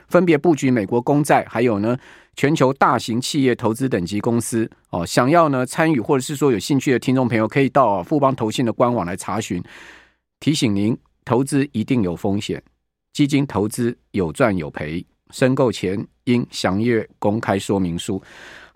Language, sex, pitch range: Chinese, male, 115-150 Hz